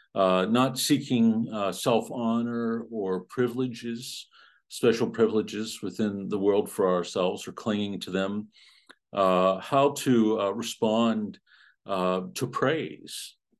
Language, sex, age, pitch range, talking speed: English, male, 50-69, 95-115 Hz, 115 wpm